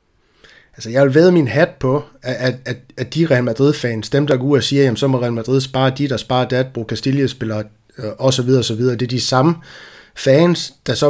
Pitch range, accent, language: 115-140 Hz, native, Danish